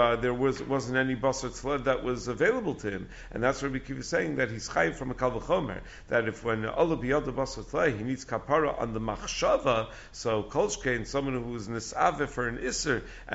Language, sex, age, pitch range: English, male, 50-69, 115-145 Hz